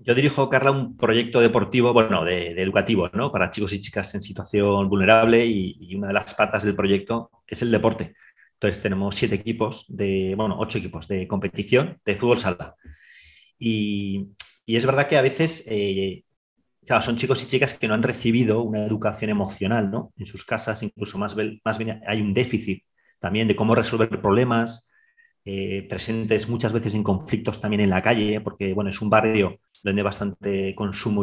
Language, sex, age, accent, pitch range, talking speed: Spanish, male, 30-49, Spanish, 100-120 Hz, 185 wpm